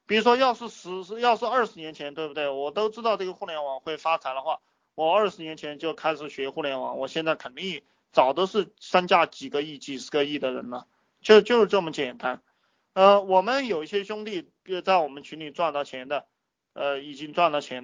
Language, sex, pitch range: Chinese, male, 145-215 Hz